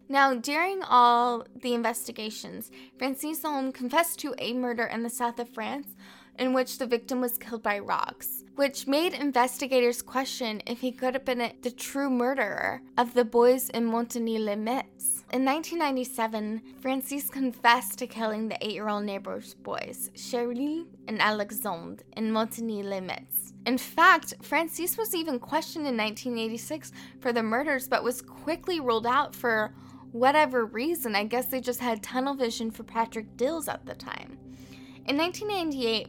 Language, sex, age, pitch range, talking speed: English, female, 10-29, 225-265 Hz, 155 wpm